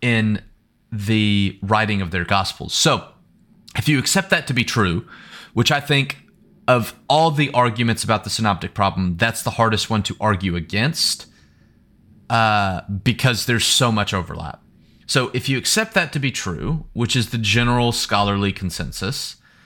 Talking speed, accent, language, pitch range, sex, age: 160 wpm, American, English, 105-145 Hz, male, 30-49